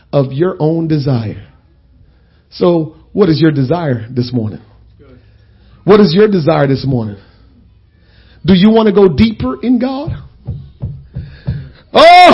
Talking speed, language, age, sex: 125 wpm, English, 50-69, male